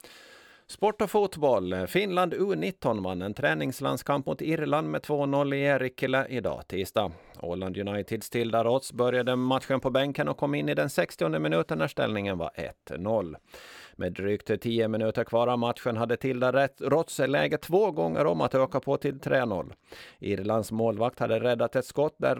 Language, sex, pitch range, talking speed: Dutch, male, 115-145 Hz, 160 wpm